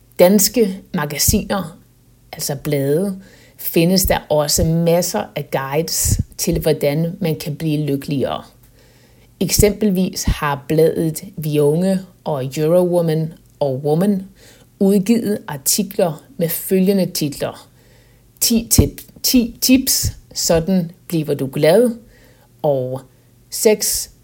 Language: Danish